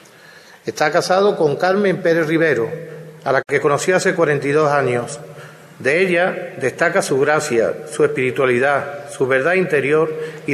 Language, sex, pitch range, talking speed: Spanish, male, 145-180 Hz, 135 wpm